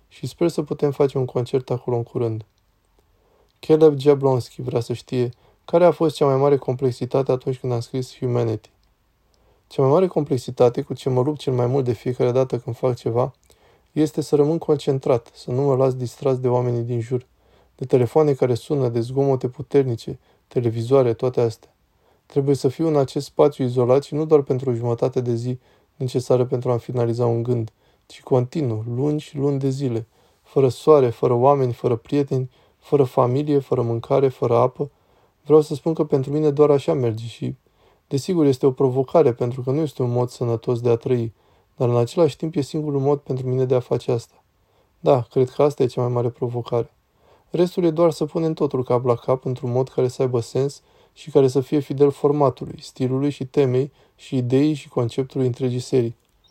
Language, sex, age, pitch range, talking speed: Romanian, male, 20-39, 120-145 Hz, 195 wpm